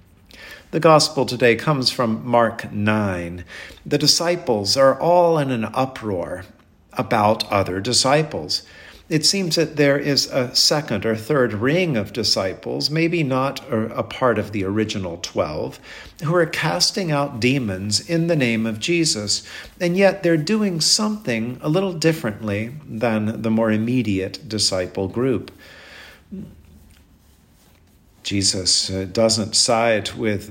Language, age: English, 50-69